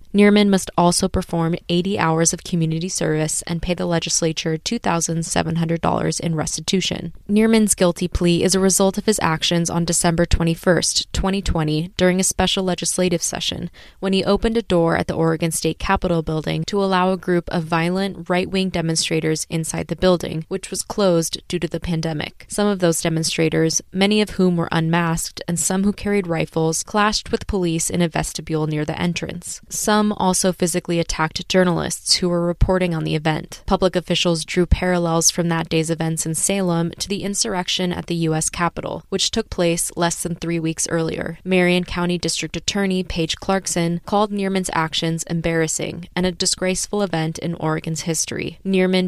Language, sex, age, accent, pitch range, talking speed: English, female, 20-39, American, 165-185 Hz, 180 wpm